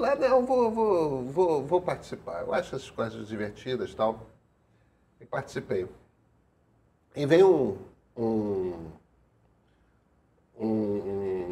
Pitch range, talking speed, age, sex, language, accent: 110-150 Hz, 115 wpm, 40-59, male, Portuguese, Brazilian